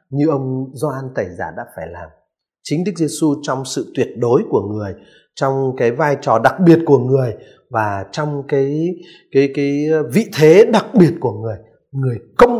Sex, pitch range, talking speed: male, 130-195 Hz, 180 wpm